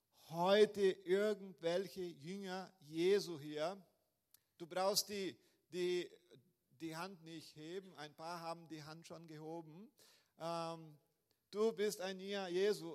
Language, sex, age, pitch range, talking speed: German, male, 50-69, 170-220 Hz, 115 wpm